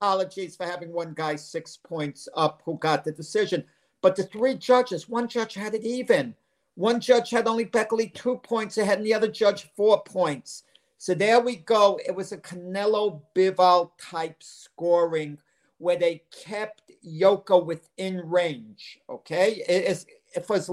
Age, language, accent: 50-69, English, American